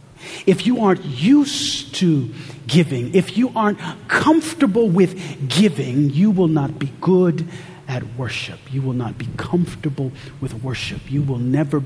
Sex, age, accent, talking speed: male, 40-59, American, 145 wpm